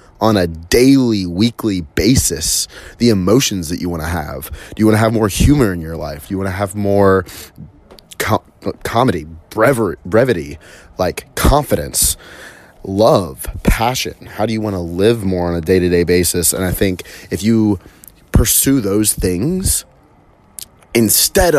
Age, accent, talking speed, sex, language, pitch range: 30-49, American, 145 wpm, male, English, 90-105 Hz